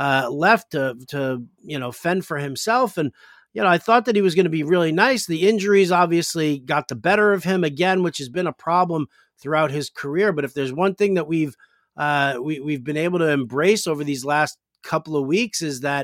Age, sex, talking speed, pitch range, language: 50-69, male, 225 wpm, 145-185 Hz, English